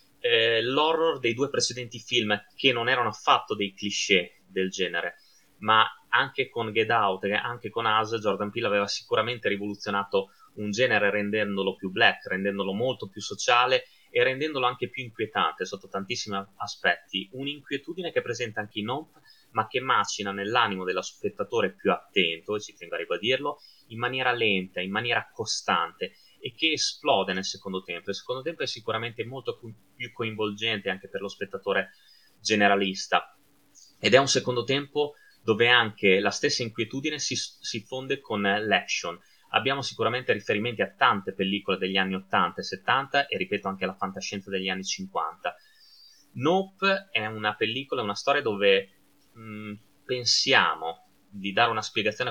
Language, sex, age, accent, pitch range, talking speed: Italian, male, 20-39, native, 100-135 Hz, 155 wpm